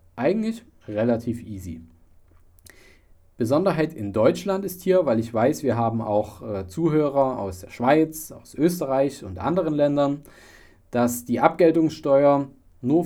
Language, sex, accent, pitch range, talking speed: German, male, German, 100-140 Hz, 130 wpm